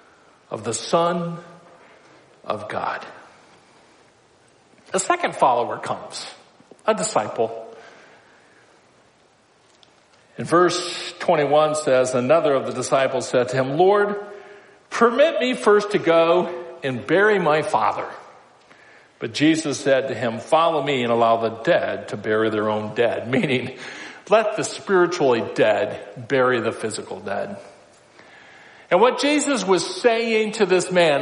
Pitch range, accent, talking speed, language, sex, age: 155-220 Hz, American, 125 wpm, English, male, 50-69